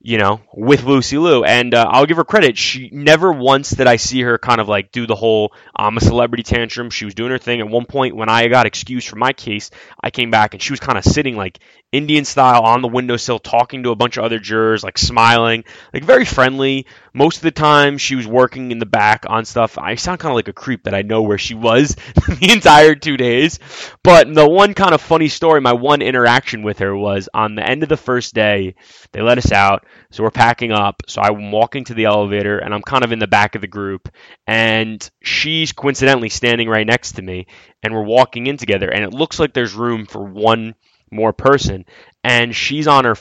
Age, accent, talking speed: 20-39, American, 235 wpm